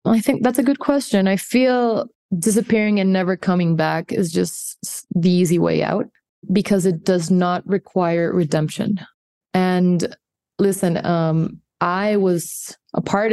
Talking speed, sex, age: 145 wpm, female, 20-39